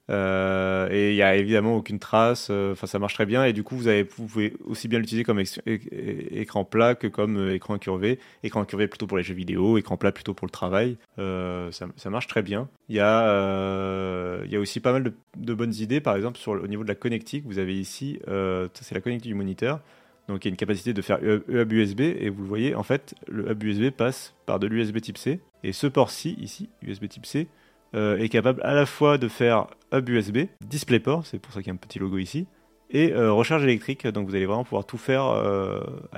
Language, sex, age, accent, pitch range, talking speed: French, male, 30-49, French, 100-120 Hz, 235 wpm